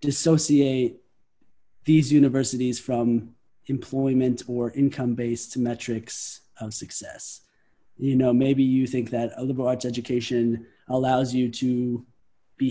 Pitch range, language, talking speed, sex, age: 120-140 Hz, English, 115 wpm, male, 20-39